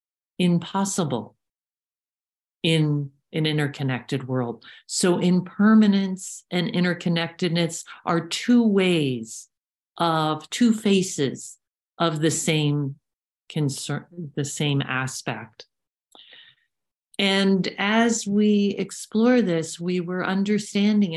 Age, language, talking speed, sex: 50-69, English, 90 wpm, male